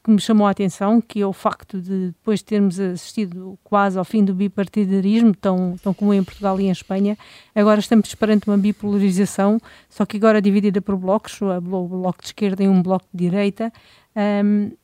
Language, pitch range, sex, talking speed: Portuguese, 190-210 Hz, female, 200 wpm